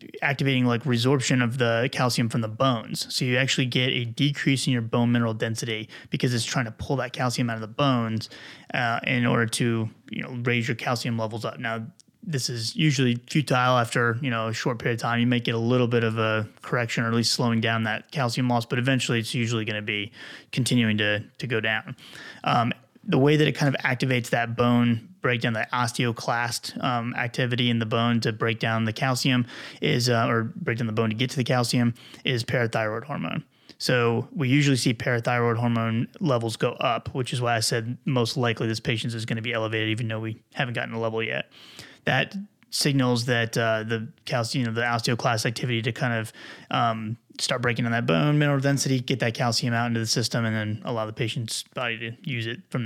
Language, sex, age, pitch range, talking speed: English, male, 20-39, 115-130 Hz, 220 wpm